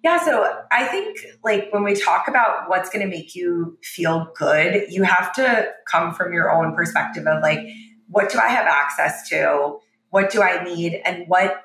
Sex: female